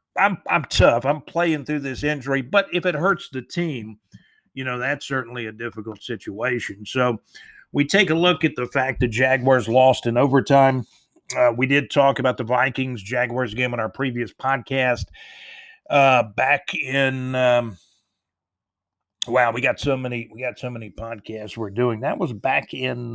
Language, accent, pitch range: English, American, 115-140 Hz